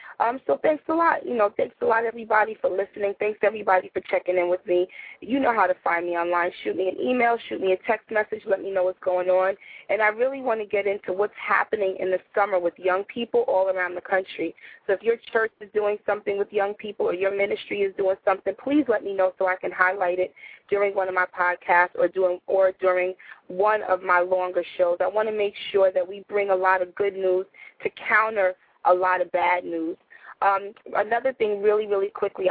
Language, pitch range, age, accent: English, 185-215 Hz, 20-39, American